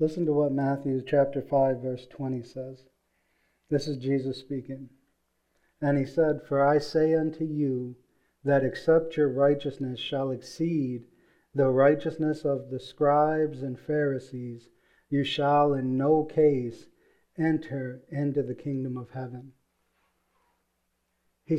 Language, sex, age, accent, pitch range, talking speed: English, male, 40-59, American, 130-155 Hz, 130 wpm